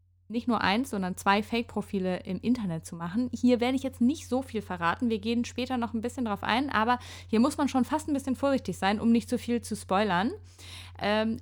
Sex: female